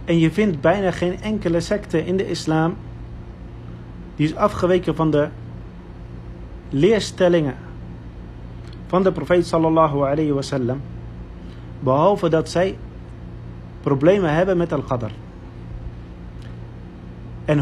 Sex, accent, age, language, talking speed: male, Dutch, 40-59, Dutch, 100 wpm